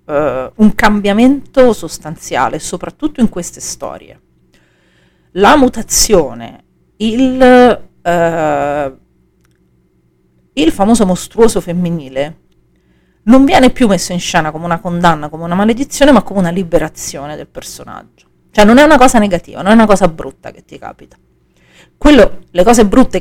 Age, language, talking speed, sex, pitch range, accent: 40-59, Italian, 125 wpm, female, 155-215 Hz, native